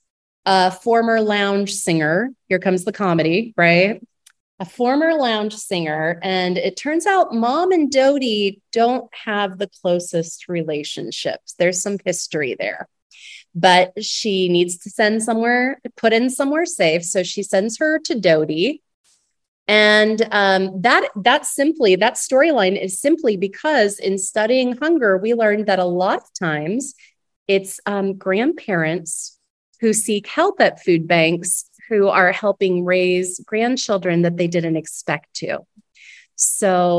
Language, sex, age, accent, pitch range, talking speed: English, female, 30-49, American, 175-235 Hz, 140 wpm